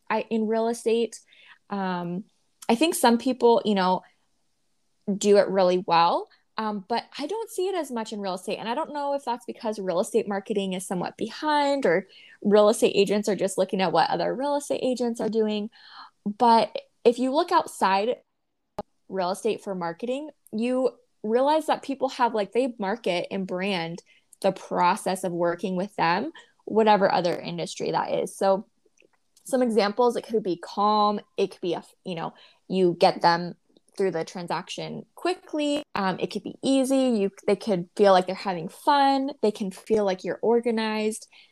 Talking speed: 180 wpm